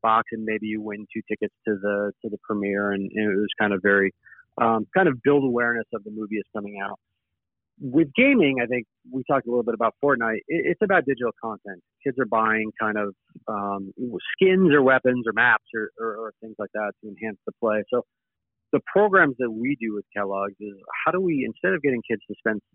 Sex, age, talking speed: male, 40-59, 220 wpm